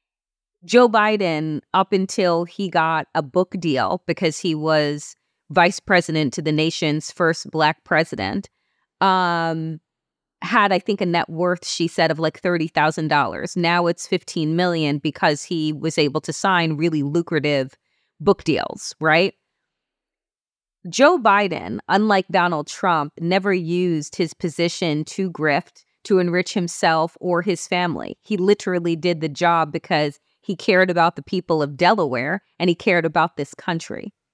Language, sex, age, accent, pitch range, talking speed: English, female, 30-49, American, 155-185 Hz, 145 wpm